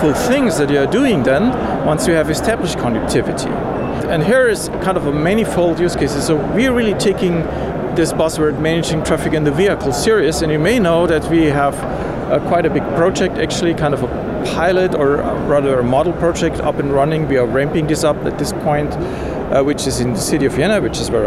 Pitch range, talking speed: 145-185 Hz, 215 wpm